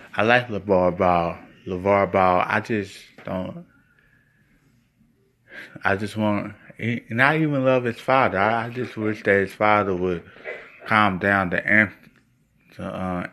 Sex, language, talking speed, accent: male, English, 140 wpm, American